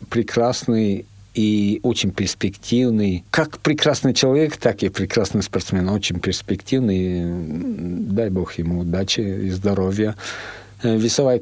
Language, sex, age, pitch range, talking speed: Russian, male, 50-69, 95-115 Hz, 105 wpm